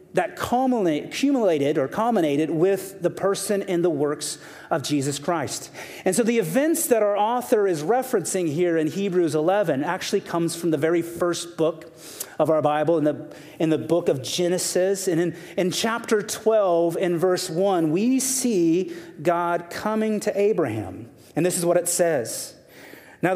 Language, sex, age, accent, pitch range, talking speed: English, male, 30-49, American, 165-210 Hz, 165 wpm